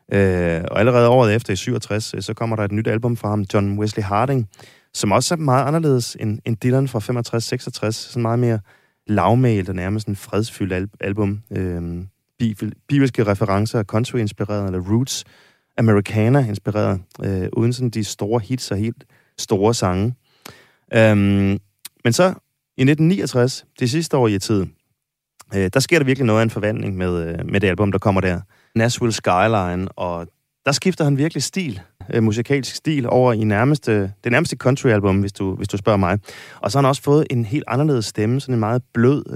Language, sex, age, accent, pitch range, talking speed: Danish, male, 30-49, native, 100-125 Hz, 175 wpm